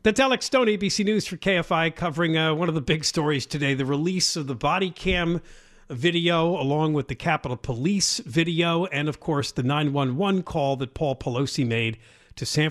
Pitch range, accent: 125-190 Hz, American